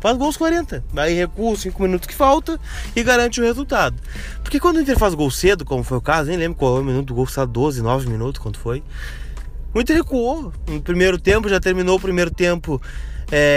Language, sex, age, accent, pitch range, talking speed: Portuguese, male, 20-39, Brazilian, 125-185 Hz, 220 wpm